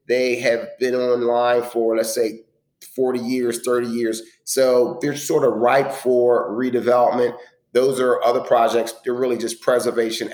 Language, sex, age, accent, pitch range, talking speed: English, male, 40-59, American, 115-130 Hz, 150 wpm